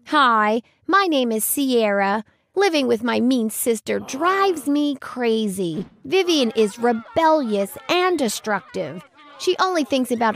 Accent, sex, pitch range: American, female, 210-295 Hz